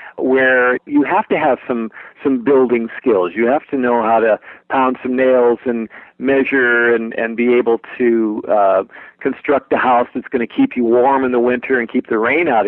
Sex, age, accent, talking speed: male, 50-69, American, 205 wpm